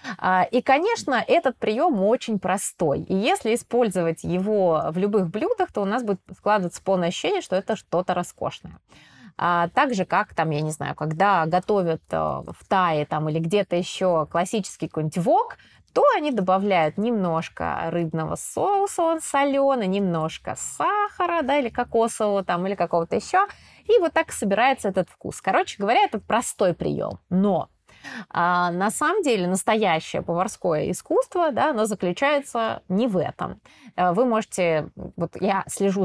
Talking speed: 145 wpm